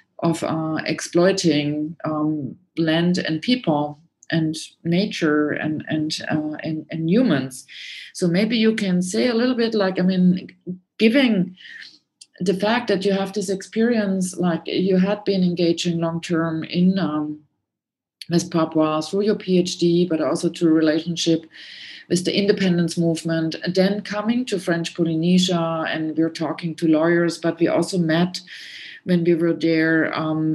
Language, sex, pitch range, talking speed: English, female, 160-185 Hz, 145 wpm